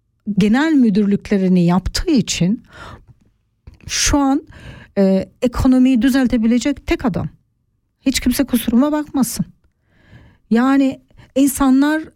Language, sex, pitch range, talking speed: German, female, 185-265 Hz, 85 wpm